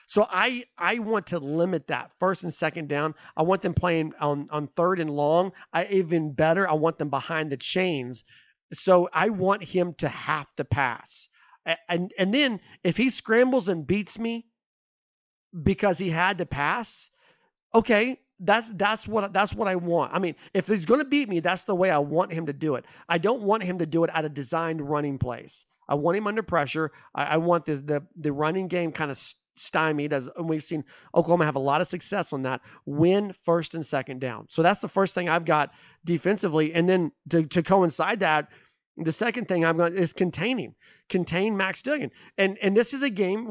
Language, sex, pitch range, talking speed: English, male, 160-205 Hz, 210 wpm